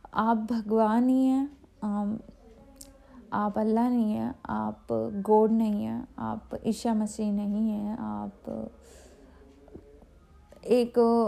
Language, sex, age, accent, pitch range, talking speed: Hindi, female, 20-39, native, 220-255 Hz, 100 wpm